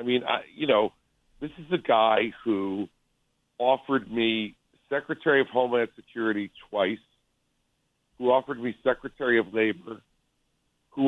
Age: 50-69